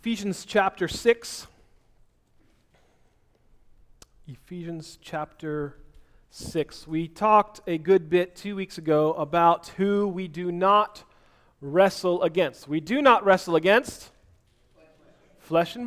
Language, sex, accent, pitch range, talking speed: English, male, American, 155-220 Hz, 105 wpm